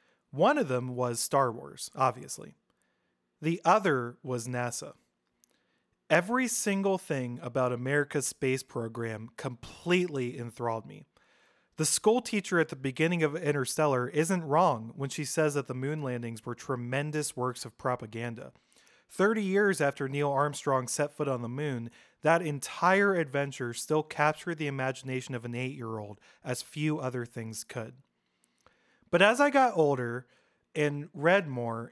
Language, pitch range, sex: English, 125-170 Hz, male